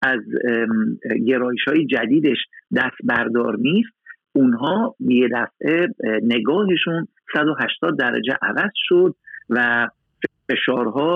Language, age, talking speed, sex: Persian, 50-69, 95 wpm, male